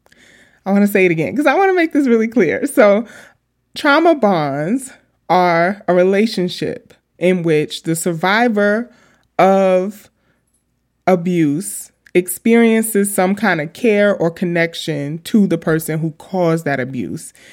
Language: English